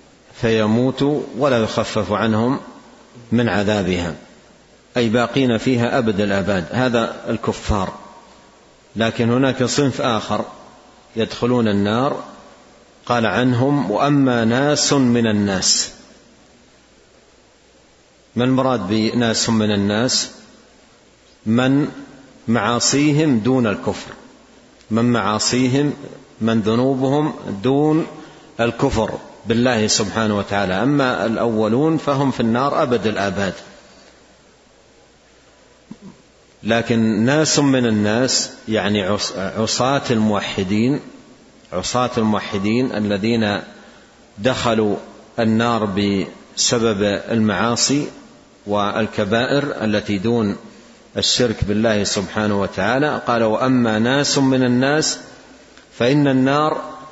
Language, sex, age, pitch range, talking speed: Arabic, male, 40-59, 105-130 Hz, 80 wpm